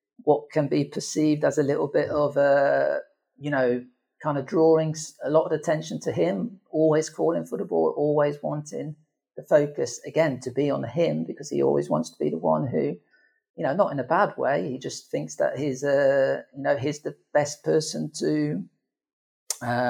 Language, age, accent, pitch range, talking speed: English, 40-59, British, 135-155 Hz, 195 wpm